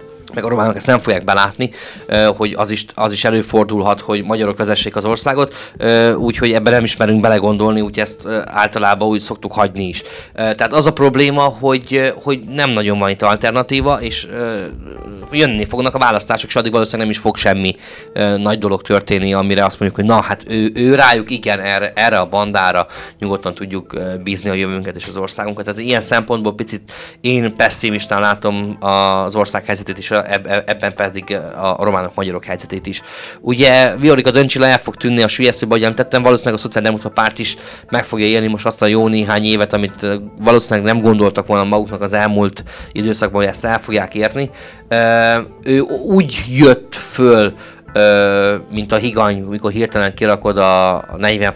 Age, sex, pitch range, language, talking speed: 20-39, male, 100-115 Hz, Hungarian, 170 wpm